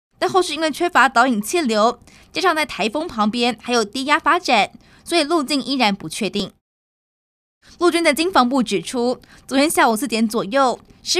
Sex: female